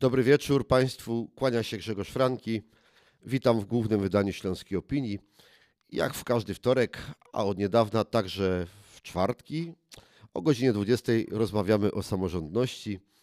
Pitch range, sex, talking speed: 110-145 Hz, male, 130 wpm